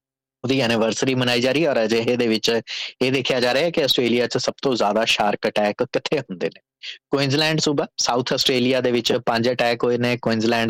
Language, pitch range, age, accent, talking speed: English, 110-130 Hz, 20-39, Indian, 175 wpm